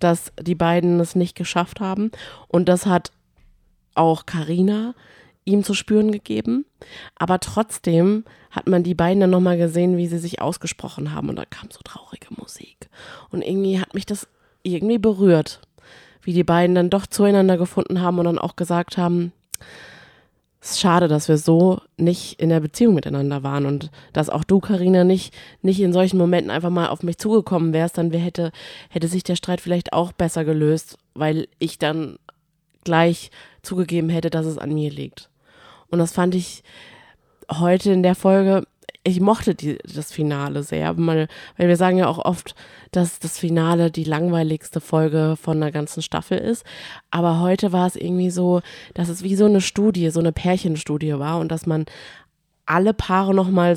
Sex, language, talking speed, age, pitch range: female, German, 175 wpm, 20-39, 160-185 Hz